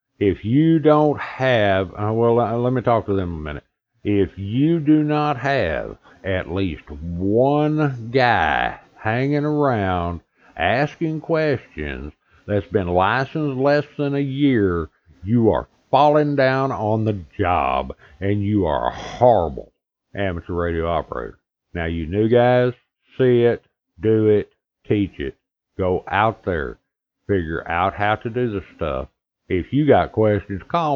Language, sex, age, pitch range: English, male, 60-79, 90-120 Hz